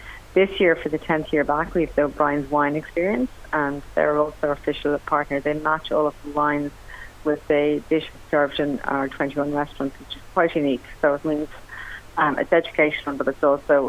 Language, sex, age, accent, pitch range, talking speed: English, female, 40-59, Irish, 145-155 Hz, 190 wpm